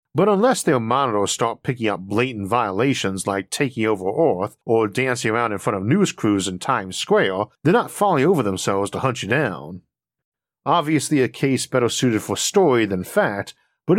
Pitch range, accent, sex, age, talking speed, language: 105-140 Hz, American, male, 50-69, 185 wpm, English